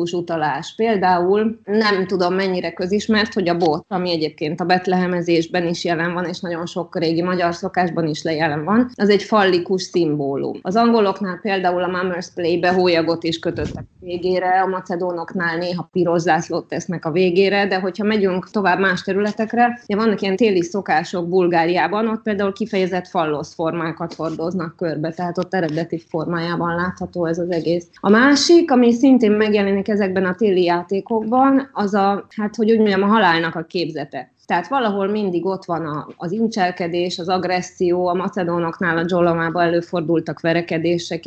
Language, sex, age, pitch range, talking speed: Hungarian, female, 20-39, 170-195 Hz, 155 wpm